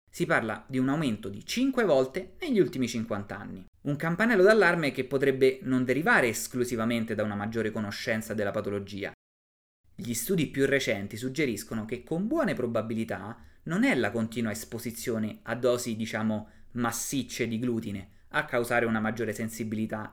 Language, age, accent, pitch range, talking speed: Italian, 20-39, native, 110-160 Hz, 150 wpm